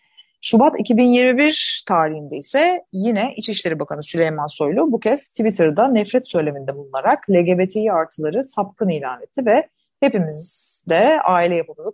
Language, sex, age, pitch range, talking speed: Turkish, female, 30-49, 155-225 Hz, 125 wpm